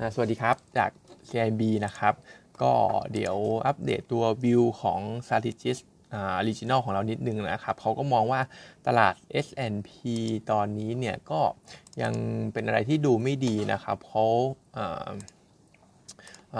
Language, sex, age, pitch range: Thai, male, 20-39, 110-130 Hz